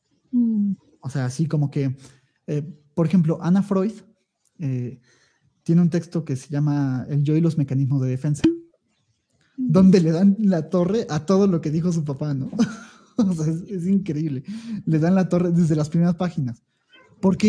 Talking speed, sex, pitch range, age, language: 175 wpm, male, 150-190 Hz, 30-49, Spanish